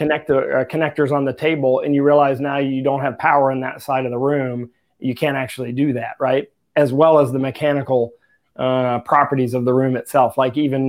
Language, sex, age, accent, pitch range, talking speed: English, male, 30-49, American, 130-150 Hz, 215 wpm